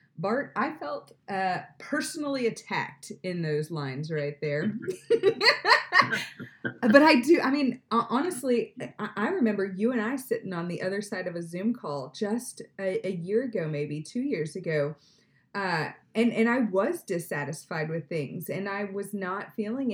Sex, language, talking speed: female, English, 160 wpm